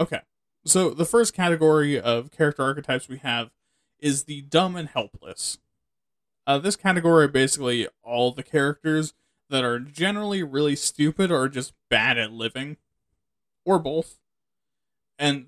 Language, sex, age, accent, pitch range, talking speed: English, male, 20-39, American, 130-170 Hz, 140 wpm